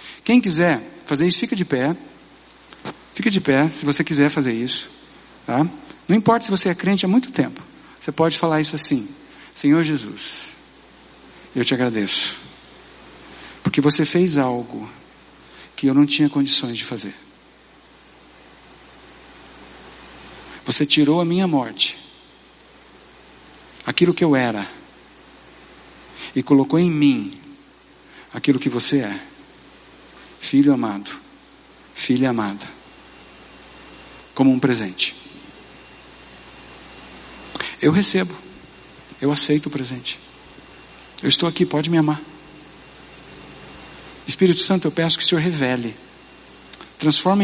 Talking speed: 115 wpm